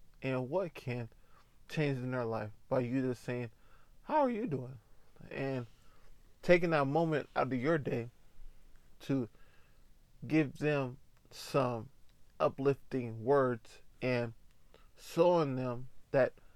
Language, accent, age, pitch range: English, American, 20-39, 120-145 Hz